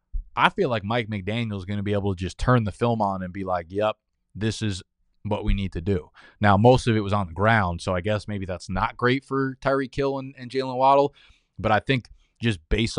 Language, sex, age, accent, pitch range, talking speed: English, male, 20-39, American, 100-125 Hz, 250 wpm